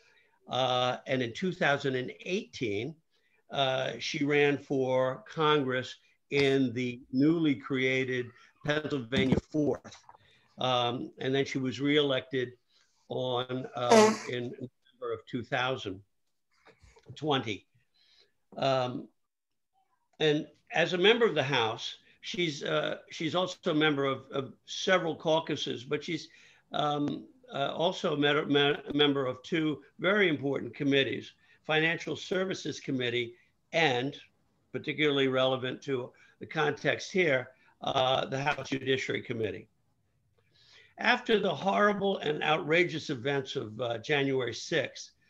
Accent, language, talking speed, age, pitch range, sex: American, English, 115 wpm, 60-79, 130-155 Hz, male